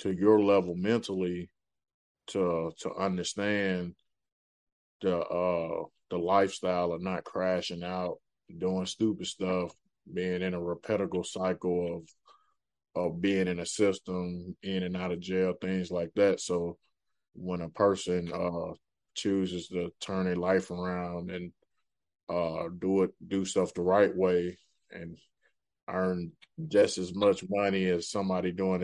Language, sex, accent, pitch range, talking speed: English, male, American, 90-95 Hz, 135 wpm